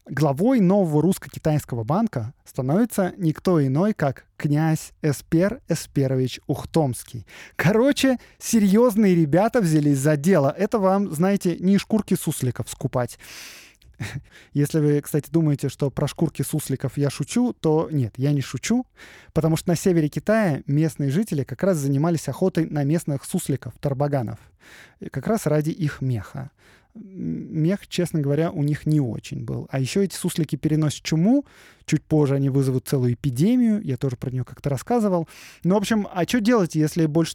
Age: 20-39